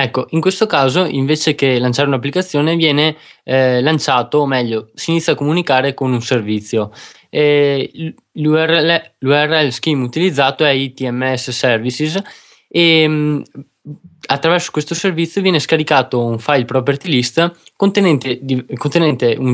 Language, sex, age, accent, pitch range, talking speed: Italian, male, 20-39, native, 125-155 Hz, 130 wpm